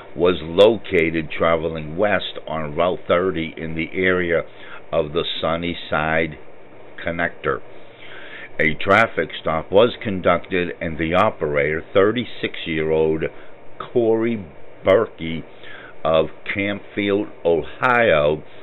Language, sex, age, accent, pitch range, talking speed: English, male, 60-79, American, 80-100 Hz, 90 wpm